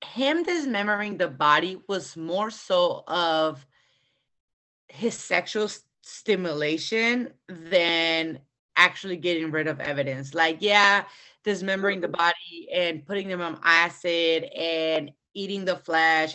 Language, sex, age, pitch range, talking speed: English, female, 30-49, 160-215 Hz, 115 wpm